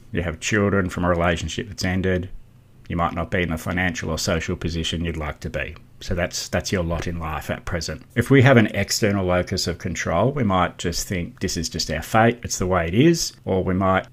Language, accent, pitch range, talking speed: English, Australian, 90-110 Hz, 240 wpm